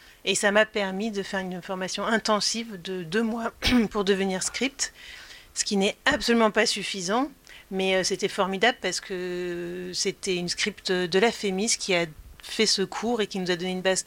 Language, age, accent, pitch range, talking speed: French, 40-59, French, 185-215 Hz, 190 wpm